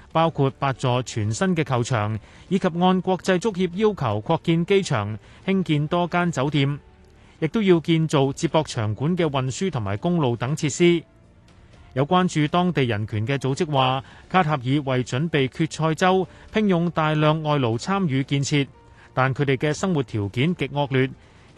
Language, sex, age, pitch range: Chinese, male, 30-49, 120-170 Hz